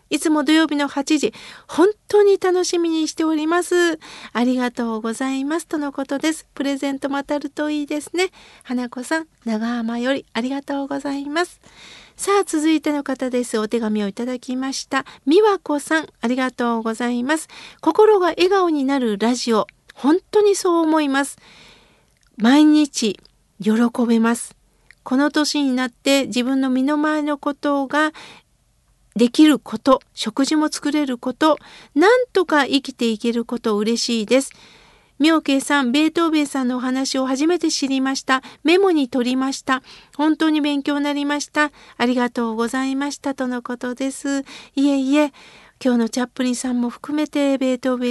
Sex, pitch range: female, 245-305 Hz